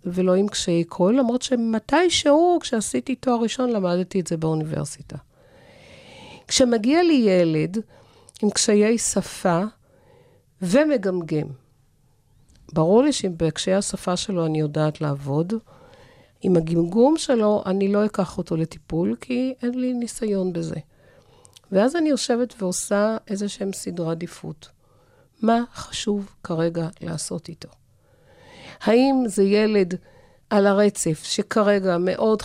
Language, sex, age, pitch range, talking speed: Hebrew, female, 50-69, 170-230 Hz, 115 wpm